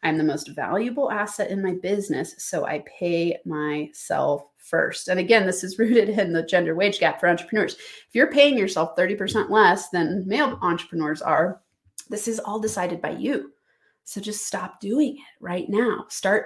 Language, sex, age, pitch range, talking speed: English, female, 30-49, 175-225 Hz, 180 wpm